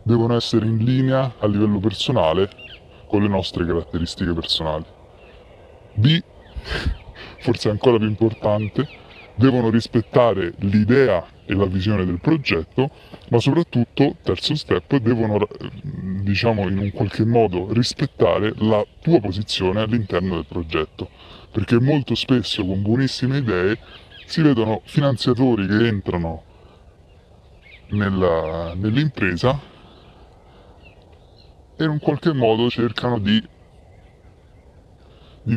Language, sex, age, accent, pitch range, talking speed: Italian, female, 30-49, native, 90-120 Hz, 105 wpm